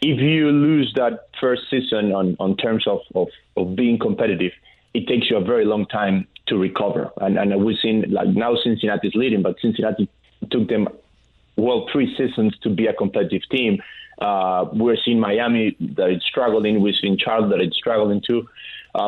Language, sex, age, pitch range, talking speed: English, male, 30-49, 105-130 Hz, 180 wpm